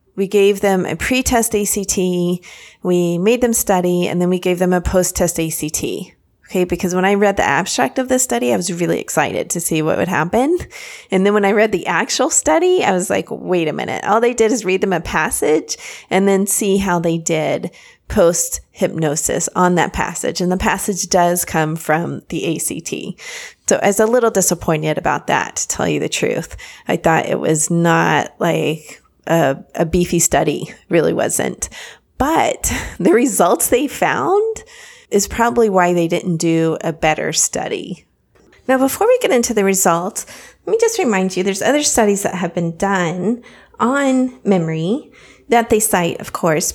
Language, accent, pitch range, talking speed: English, American, 170-225 Hz, 180 wpm